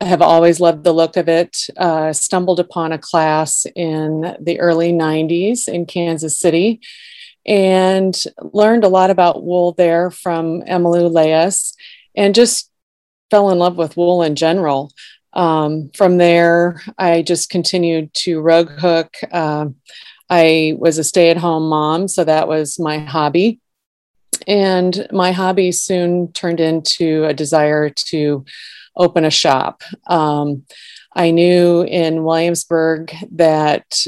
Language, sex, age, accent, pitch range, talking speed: English, female, 30-49, American, 155-180 Hz, 135 wpm